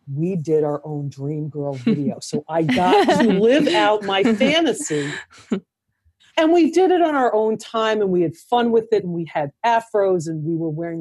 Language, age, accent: English, 50-69, American